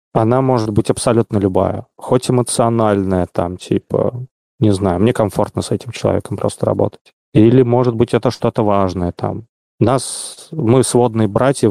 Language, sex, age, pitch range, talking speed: Russian, male, 30-49, 100-125 Hz, 150 wpm